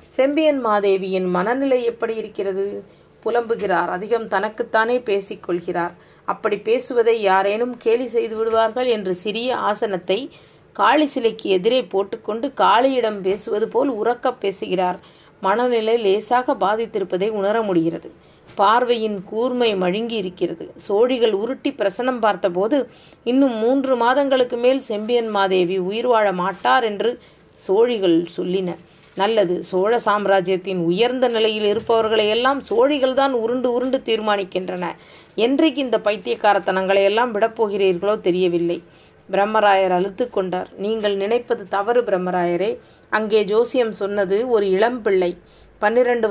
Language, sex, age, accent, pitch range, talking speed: Tamil, female, 30-49, native, 195-240 Hz, 105 wpm